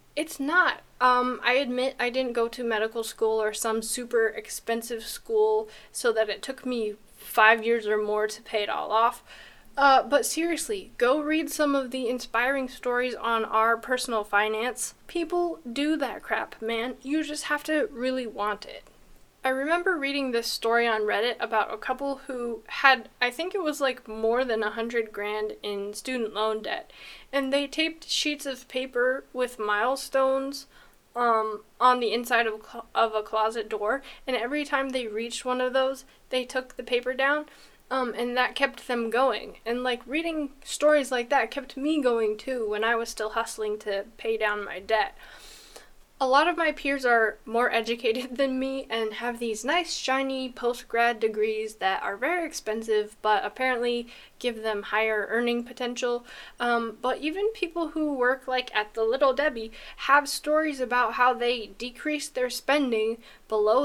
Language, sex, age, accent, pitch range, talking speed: English, female, 10-29, American, 225-275 Hz, 175 wpm